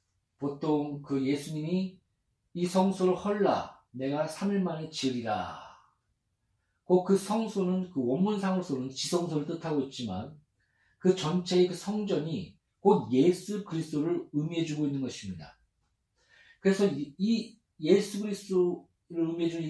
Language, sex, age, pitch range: Korean, male, 40-59, 125-185 Hz